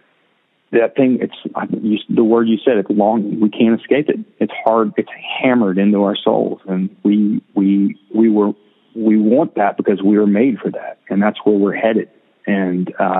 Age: 40-59